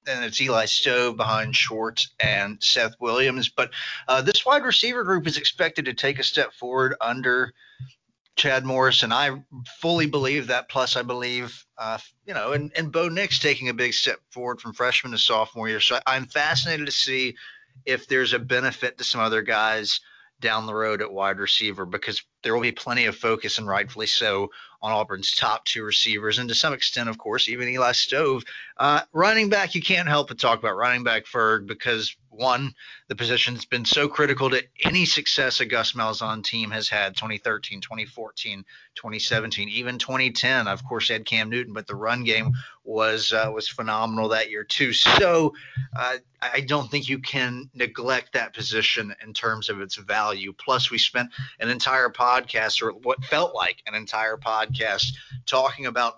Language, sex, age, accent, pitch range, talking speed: English, male, 30-49, American, 110-135 Hz, 185 wpm